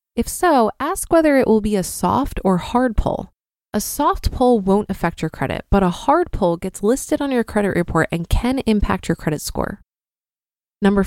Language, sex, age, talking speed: English, female, 20-39, 195 wpm